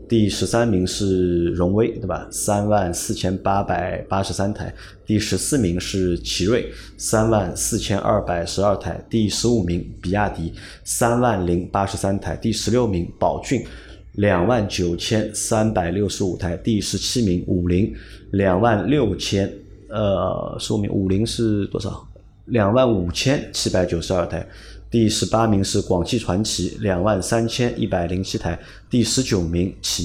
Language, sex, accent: Chinese, male, native